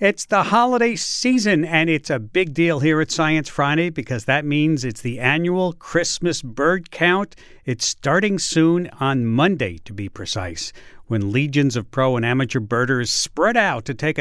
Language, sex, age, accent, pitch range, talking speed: English, male, 50-69, American, 130-180 Hz, 175 wpm